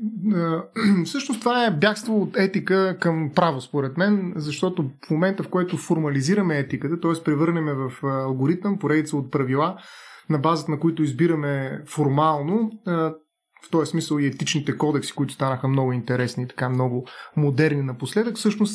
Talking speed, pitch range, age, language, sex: 145 wpm, 140-175 Hz, 30-49, Bulgarian, male